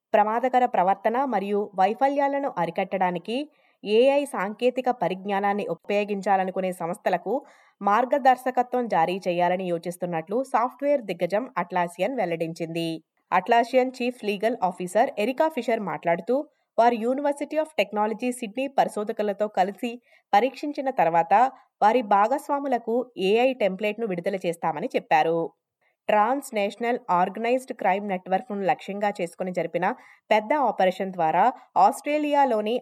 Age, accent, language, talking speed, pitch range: 20-39, native, Telugu, 90 wpm, 185-255 Hz